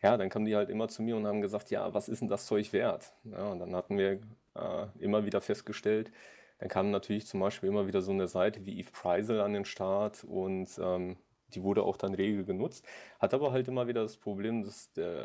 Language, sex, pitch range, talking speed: German, male, 100-120 Hz, 230 wpm